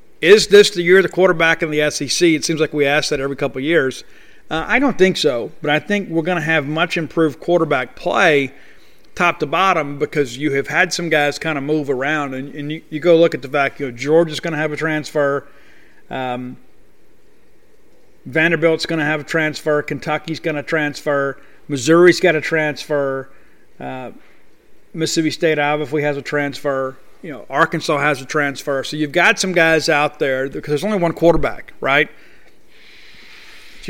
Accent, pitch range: American, 145-170 Hz